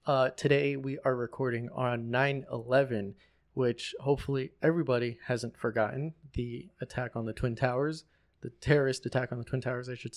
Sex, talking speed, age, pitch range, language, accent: male, 160 wpm, 20-39, 125-145 Hz, English, American